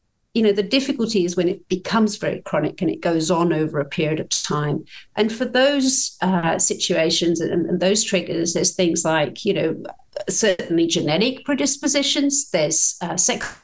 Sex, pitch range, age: female, 170-210 Hz, 50-69